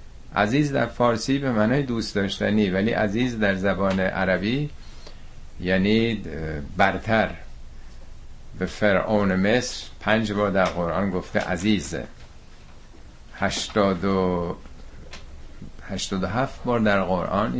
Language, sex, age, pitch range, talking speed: Persian, male, 50-69, 80-110 Hz, 100 wpm